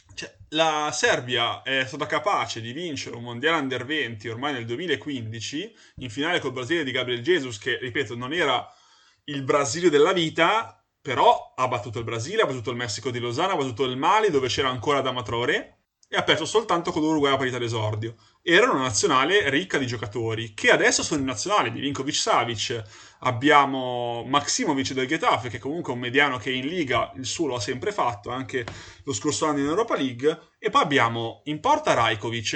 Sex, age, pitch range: male, 20-39, 120-150 Hz